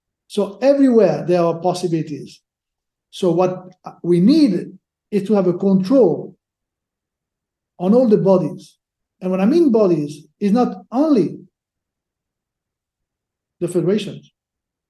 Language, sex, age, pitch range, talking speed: English, male, 60-79, 165-215 Hz, 115 wpm